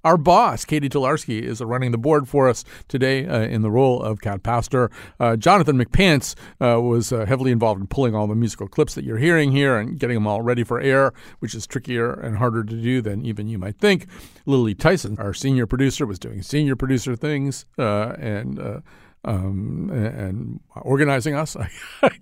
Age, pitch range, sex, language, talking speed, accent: 50-69, 115-145 Hz, male, English, 195 wpm, American